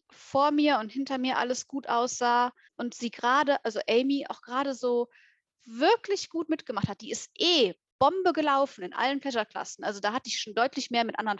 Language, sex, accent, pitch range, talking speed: English, female, German, 230-300 Hz, 195 wpm